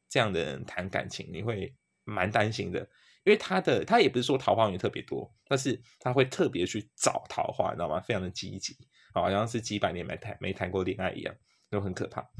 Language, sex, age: Chinese, male, 20-39